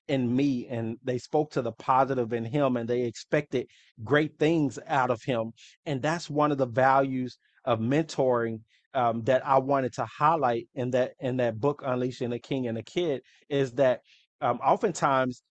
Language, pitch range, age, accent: English, 125-145 Hz, 30-49, American